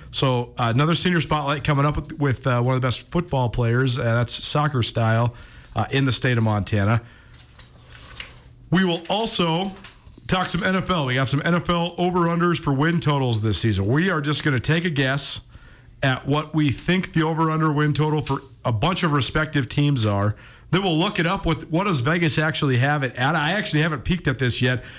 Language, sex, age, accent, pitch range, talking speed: English, male, 40-59, American, 125-165 Hz, 205 wpm